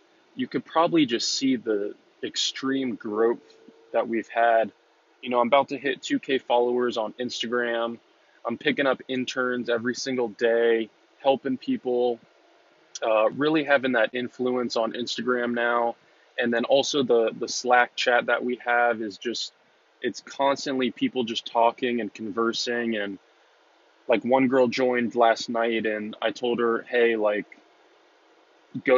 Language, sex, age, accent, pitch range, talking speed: English, male, 20-39, American, 115-130 Hz, 145 wpm